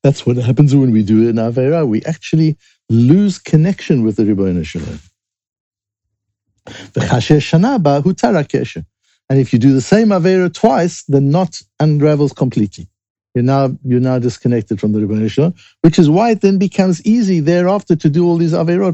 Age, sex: 60-79, male